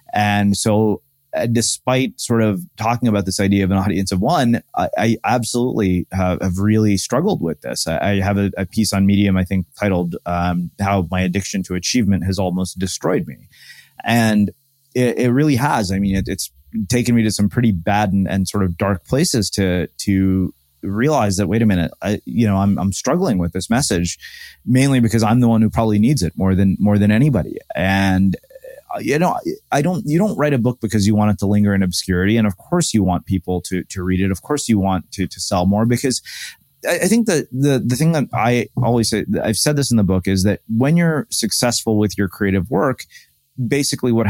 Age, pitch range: 30-49, 95-115 Hz